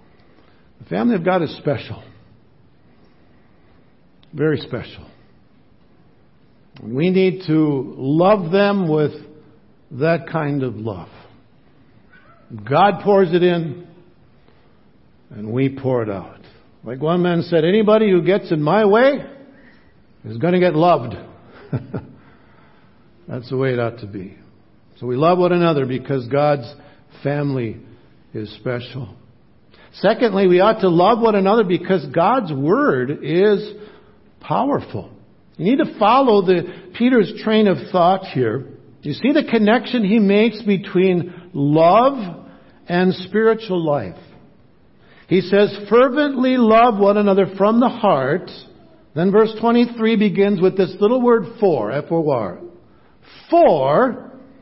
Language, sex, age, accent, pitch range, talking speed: English, male, 60-79, American, 140-215 Hz, 125 wpm